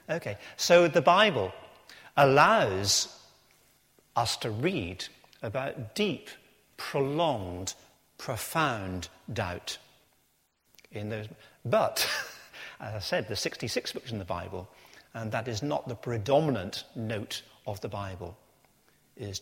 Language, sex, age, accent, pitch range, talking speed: English, male, 50-69, British, 105-140 Hz, 115 wpm